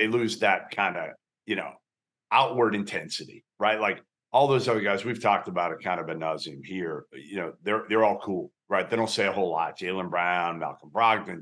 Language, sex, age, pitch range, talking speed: English, male, 50-69, 100-125 Hz, 215 wpm